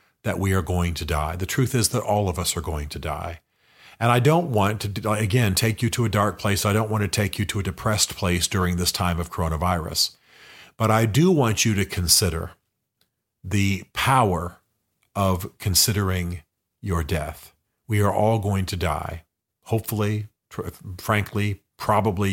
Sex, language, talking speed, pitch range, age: male, English, 175 wpm, 90-110 Hz, 40-59